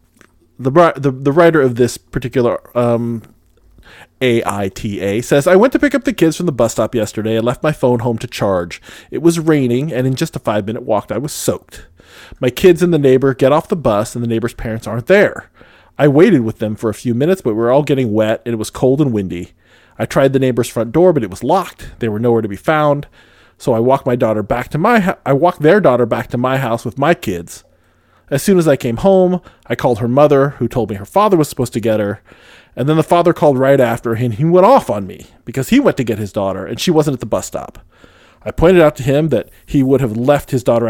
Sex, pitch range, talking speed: male, 115-150 Hz, 250 wpm